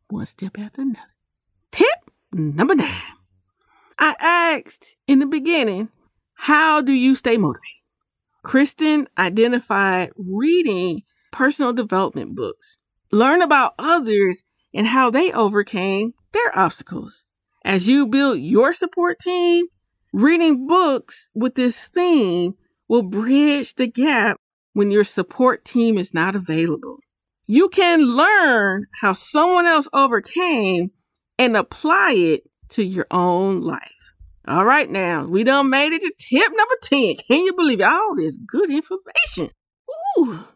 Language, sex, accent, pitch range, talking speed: English, female, American, 205-330 Hz, 130 wpm